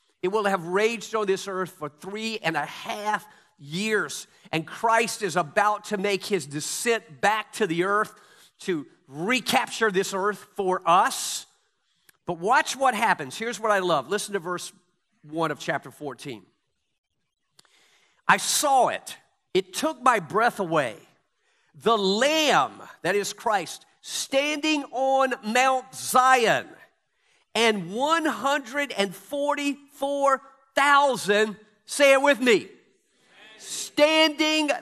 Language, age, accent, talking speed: English, 50-69, American, 120 wpm